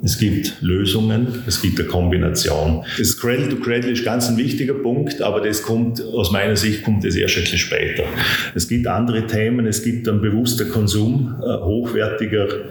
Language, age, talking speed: German, 40-59, 175 wpm